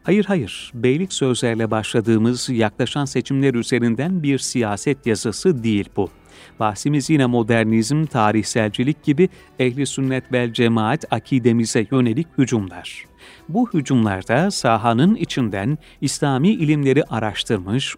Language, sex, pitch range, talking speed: Turkish, male, 115-150 Hz, 105 wpm